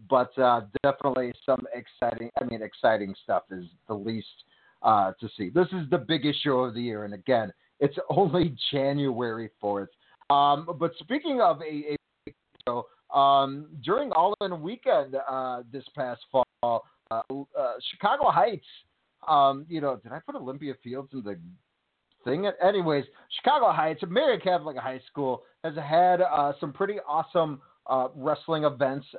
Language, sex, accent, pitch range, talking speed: English, male, American, 130-160 Hz, 155 wpm